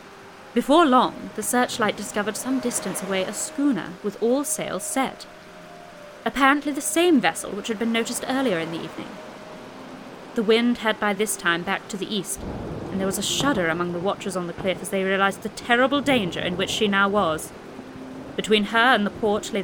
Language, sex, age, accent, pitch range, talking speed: English, female, 30-49, British, 200-250 Hz, 195 wpm